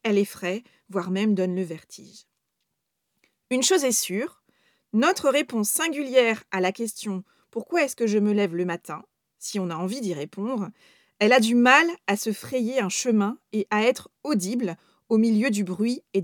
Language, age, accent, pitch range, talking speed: French, 40-59, French, 200-255 Hz, 190 wpm